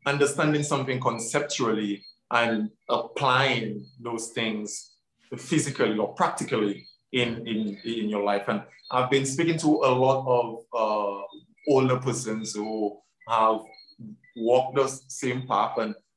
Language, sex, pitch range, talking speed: English, male, 110-130 Hz, 125 wpm